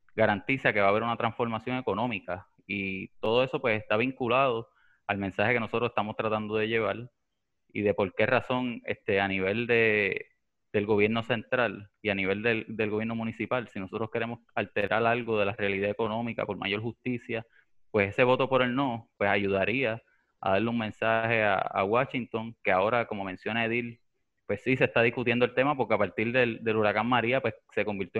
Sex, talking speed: male, 190 wpm